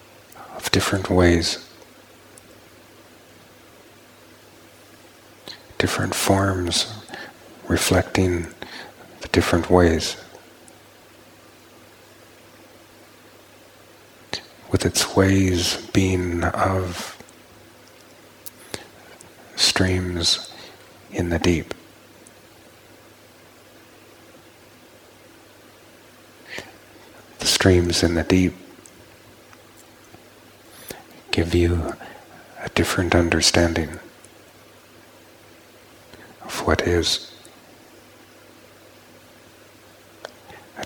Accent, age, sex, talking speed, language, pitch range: American, 50-69, male, 45 wpm, English, 85-90 Hz